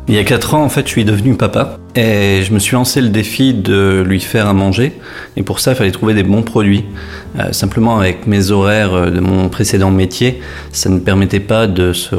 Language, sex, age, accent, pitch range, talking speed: French, male, 30-49, French, 95-110 Hz, 230 wpm